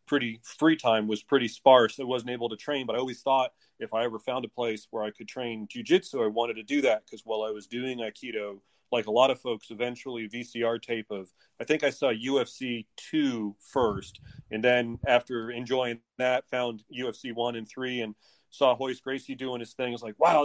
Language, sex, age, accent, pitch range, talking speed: English, male, 30-49, American, 115-135 Hz, 215 wpm